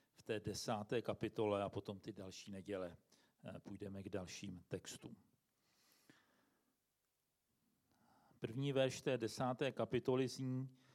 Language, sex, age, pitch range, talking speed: Czech, male, 50-69, 120-160 Hz, 105 wpm